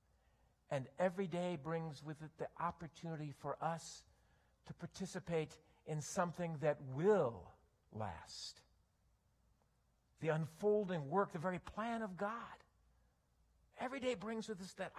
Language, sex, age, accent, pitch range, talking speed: English, male, 50-69, American, 175-230 Hz, 125 wpm